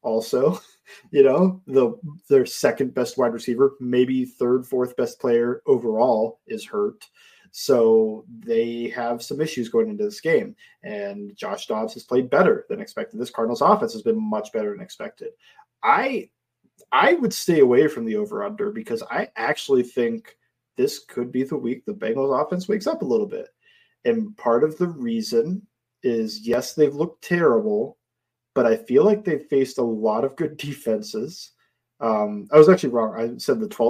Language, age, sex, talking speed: English, 20-39, male, 170 wpm